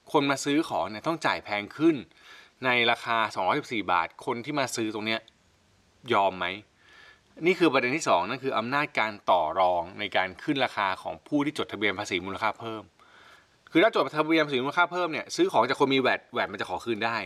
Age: 20-39